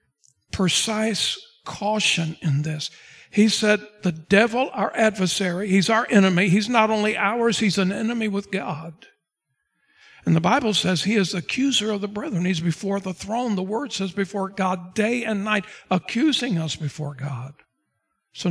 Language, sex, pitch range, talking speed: English, male, 165-215 Hz, 160 wpm